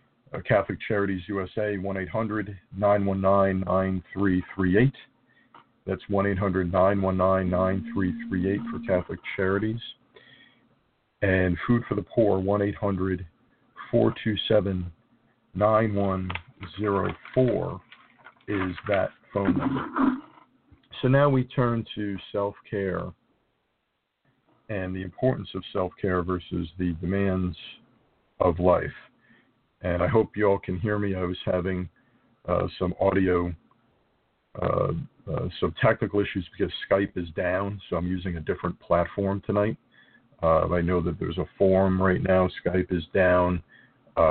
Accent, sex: American, male